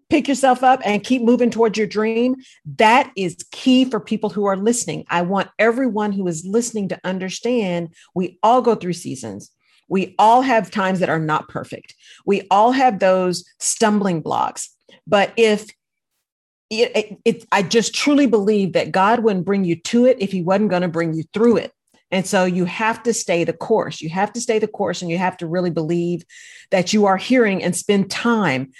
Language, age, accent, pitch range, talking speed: English, 40-59, American, 180-230 Hz, 200 wpm